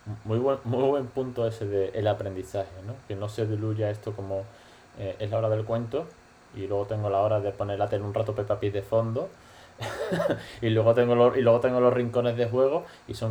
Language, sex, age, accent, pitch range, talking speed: Spanish, male, 20-39, Spanish, 100-120 Hz, 220 wpm